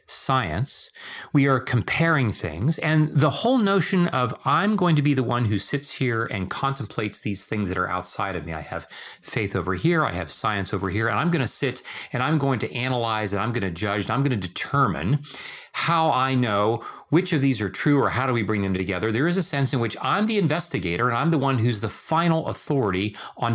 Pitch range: 110-160 Hz